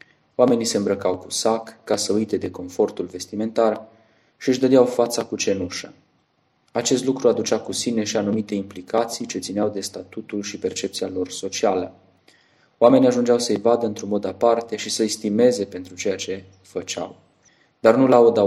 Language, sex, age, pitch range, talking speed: English, male, 20-39, 95-115 Hz, 160 wpm